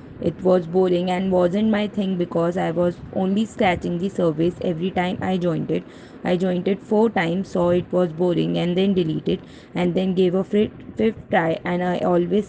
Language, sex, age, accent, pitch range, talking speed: English, female, 20-39, Indian, 175-195 Hz, 190 wpm